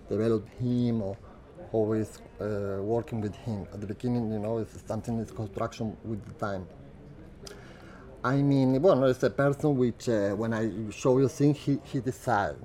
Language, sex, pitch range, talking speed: French, male, 100-120 Hz, 170 wpm